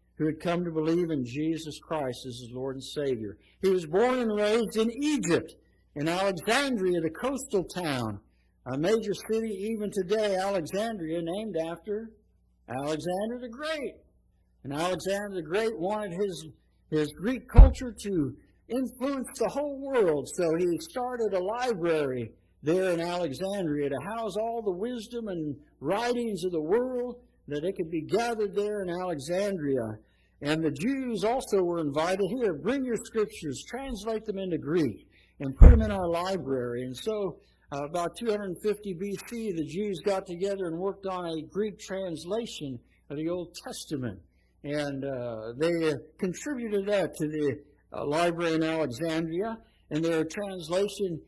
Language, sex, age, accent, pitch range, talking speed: English, male, 60-79, American, 150-210 Hz, 150 wpm